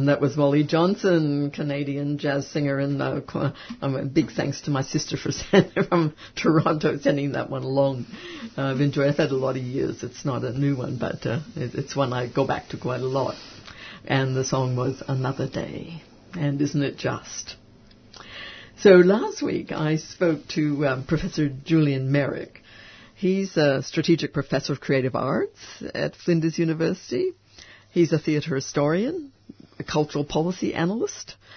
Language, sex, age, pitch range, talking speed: English, female, 60-79, 135-170 Hz, 165 wpm